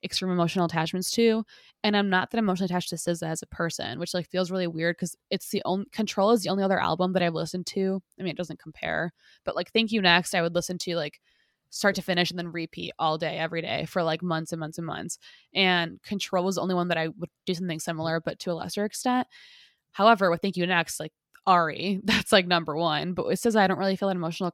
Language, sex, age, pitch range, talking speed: English, female, 20-39, 170-195 Hz, 250 wpm